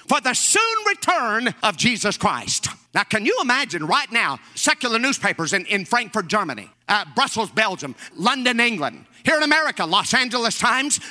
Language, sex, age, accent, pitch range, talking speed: English, male, 50-69, American, 220-360 Hz, 160 wpm